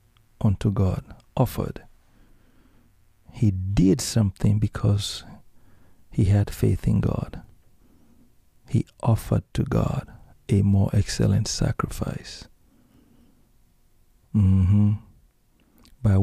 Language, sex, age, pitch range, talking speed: English, male, 50-69, 95-110 Hz, 85 wpm